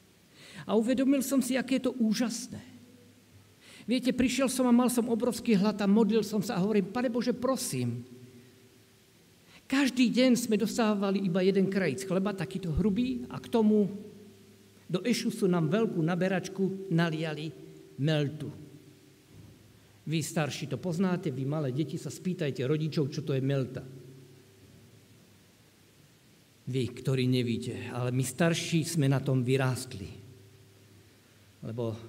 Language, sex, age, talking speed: Slovak, male, 50-69, 130 wpm